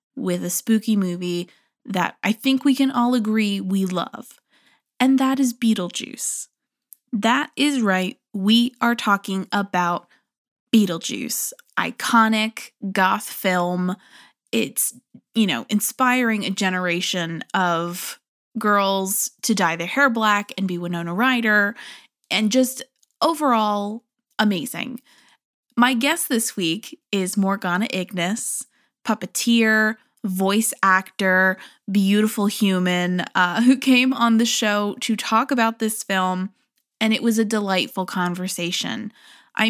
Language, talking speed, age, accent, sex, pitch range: English, 120 wpm, 20-39, American, female, 190-250 Hz